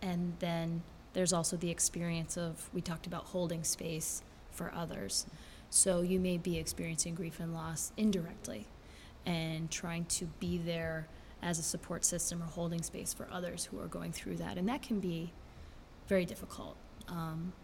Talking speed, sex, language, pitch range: 165 wpm, female, English, 165-180 Hz